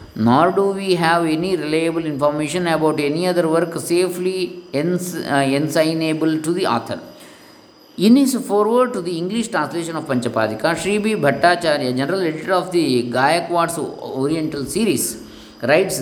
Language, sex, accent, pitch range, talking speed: English, male, Indian, 135-180 Hz, 140 wpm